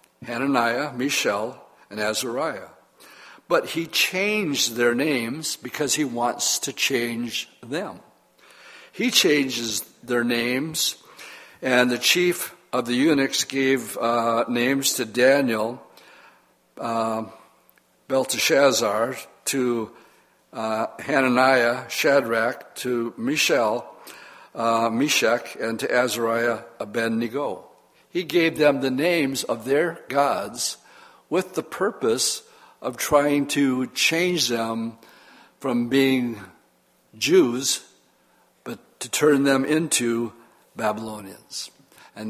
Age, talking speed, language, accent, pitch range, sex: 60-79, 100 wpm, English, American, 115-140 Hz, male